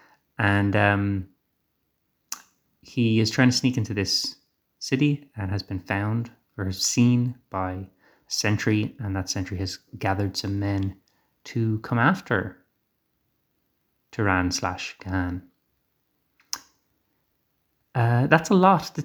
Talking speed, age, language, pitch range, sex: 115 wpm, 30-49, English, 100-135 Hz, male